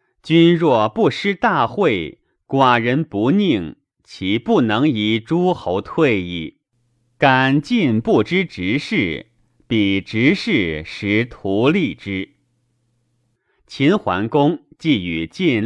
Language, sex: Chinese, male